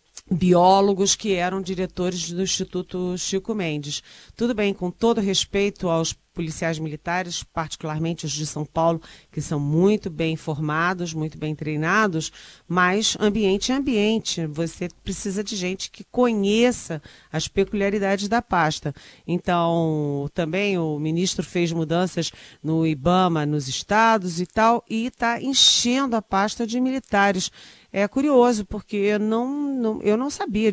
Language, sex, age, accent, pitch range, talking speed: Portuguese, female, 40-59, Brazilian, 165-205 Hz, 135 wpm